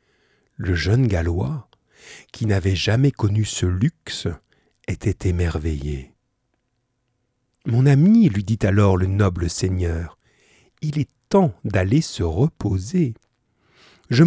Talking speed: 110 wpm